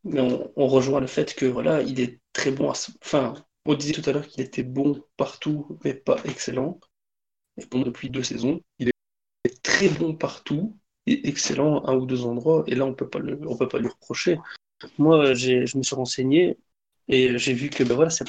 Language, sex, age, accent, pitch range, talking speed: French, male, 20-39, French, 130-150 Hz, 225 wpm